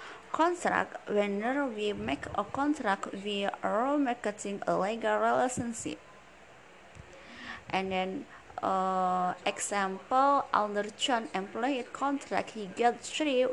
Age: 20-39